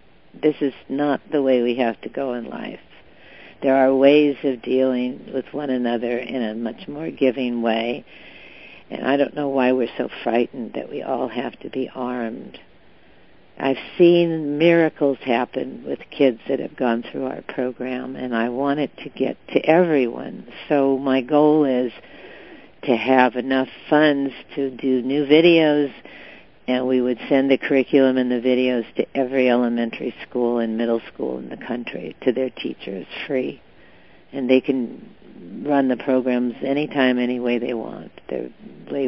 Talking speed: 165 wpm